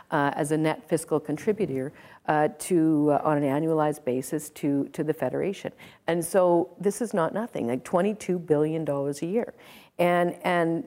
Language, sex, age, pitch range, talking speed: English, female, 50-69, 155-190 Hz, 160 wpm